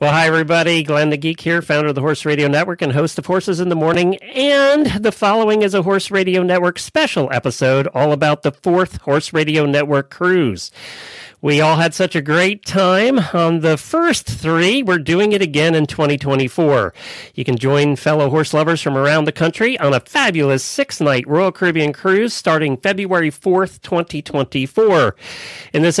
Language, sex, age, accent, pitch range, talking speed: English, male, 40-59, American, 145-190 Hz, 180 wpm